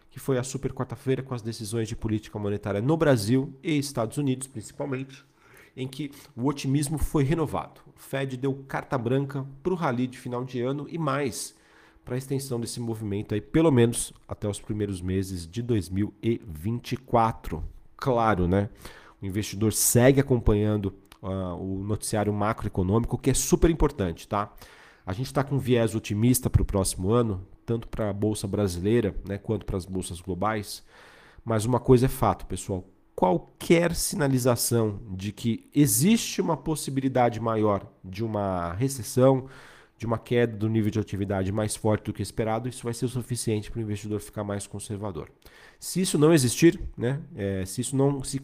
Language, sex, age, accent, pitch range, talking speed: Portuguese, male, 40-59, Brazilian, 105-135 Hz, 170 wpm